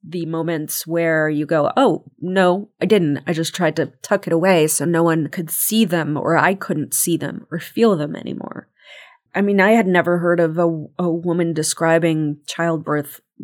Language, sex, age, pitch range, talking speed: English, female, 30-49, 160-190 Hz, 190 wpm